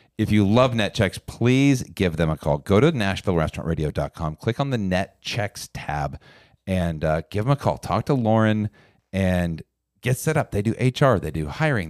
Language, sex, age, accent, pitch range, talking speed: English, male, 40-59, American, 95-125 Hz, 190 wpm